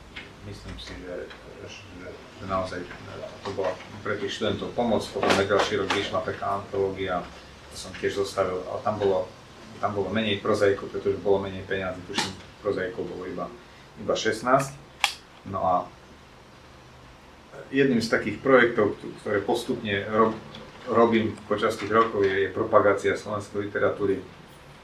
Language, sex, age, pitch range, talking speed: Slovak, male, 40-59, 95-105 Hz, 140 wpm